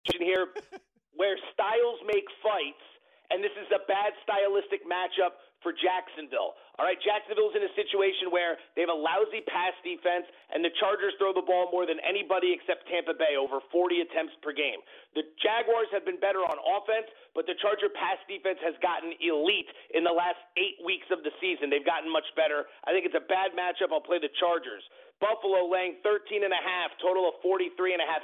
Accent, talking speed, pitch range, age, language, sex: American, 185 wpm, 165-215 Hz, 40-59, English, male